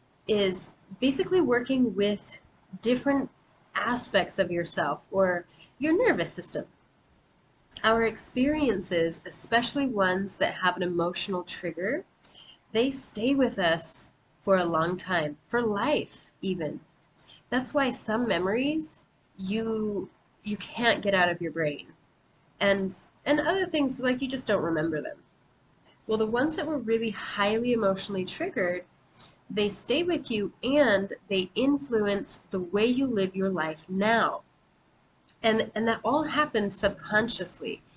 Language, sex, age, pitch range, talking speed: English, female, 30-49, 175-240 Hz, 130 wpm